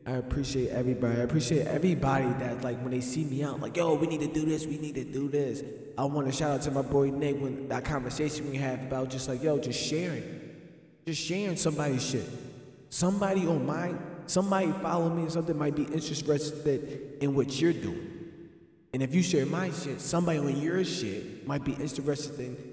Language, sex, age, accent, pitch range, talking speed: English, male, 20-39, American, 135-175 Hz, 200 wpm